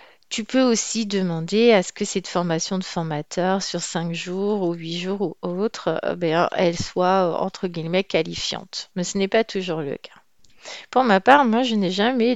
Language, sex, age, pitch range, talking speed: French, female, 40-59, 175-220 Hz, 185 wpm